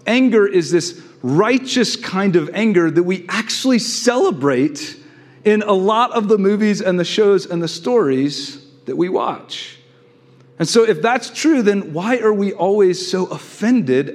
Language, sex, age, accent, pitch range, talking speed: English, male, 40-59, American, 130-205 Hz, 160 wpm